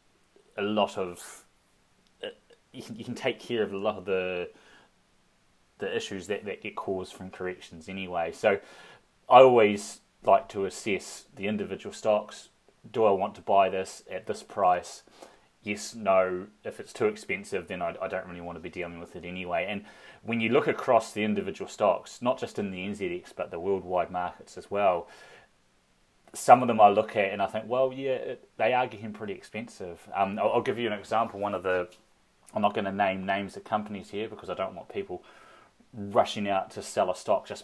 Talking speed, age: 200 wpm, 30-49